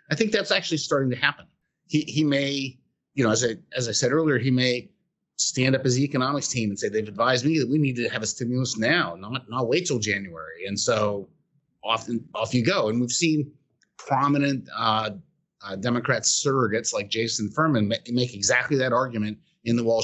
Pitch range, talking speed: 110-150 Hz, 200 wpm